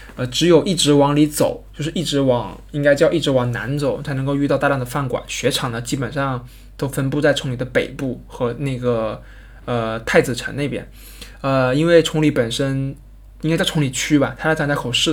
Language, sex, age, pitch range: Chinese, male, 20-39, 125-155 Hz